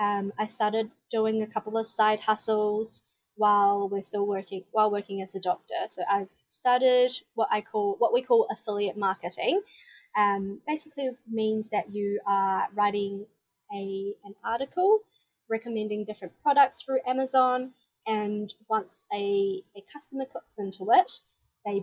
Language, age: English, 20-39